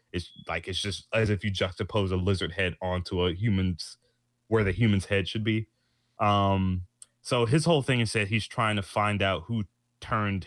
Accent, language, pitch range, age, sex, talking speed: American, English, 100-120 Hz, 20-39, male, 195 wpm